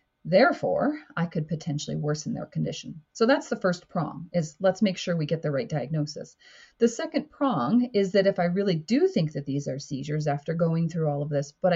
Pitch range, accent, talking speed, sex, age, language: 150-195 Hz, American, 215 wpm, female, 30-49, English